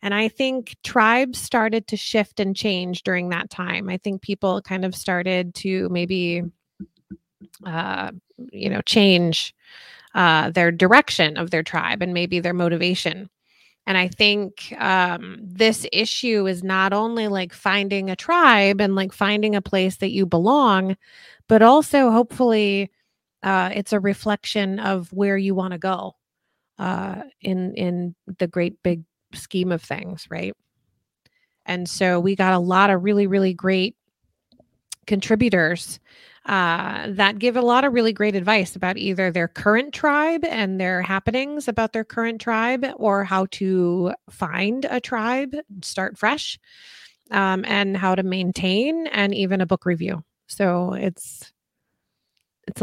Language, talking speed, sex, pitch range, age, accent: English, 145 wpm, female, 185-215 Hz, 30-49, American